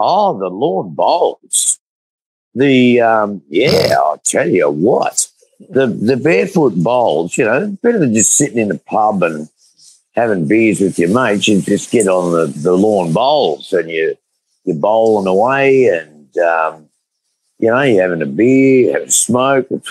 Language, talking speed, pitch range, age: English, 170 wpm, 100-140 Hz, 50-69